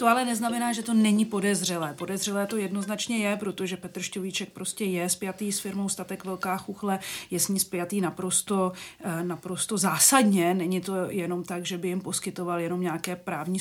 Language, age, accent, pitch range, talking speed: Czech, 40-59, native, 175-210 Hz, 170 wpm